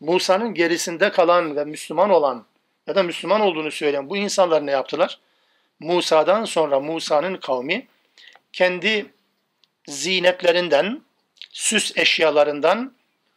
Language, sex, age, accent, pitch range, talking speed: Turkish, male, 50-69, native, 155-185 Hz, 105 wpm